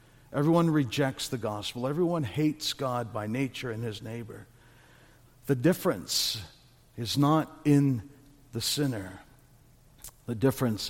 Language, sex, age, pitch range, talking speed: English, male, 60-79, 120-145 Hz, 115 wpm